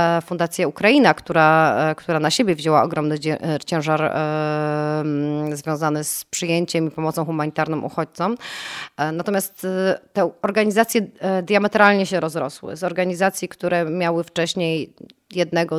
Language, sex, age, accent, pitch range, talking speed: Polish, female, 30-49, native, 150-170 Hz, 105 wpm